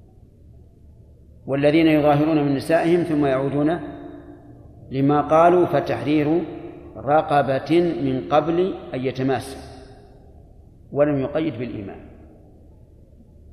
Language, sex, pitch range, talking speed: Arabic, male, 125-155 Hz, 75 wpm